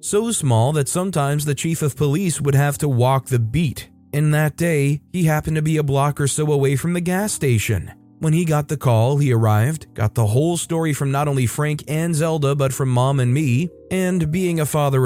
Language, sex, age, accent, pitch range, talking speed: English, male, 30-49, American, 115-150 Hz, 225 wpm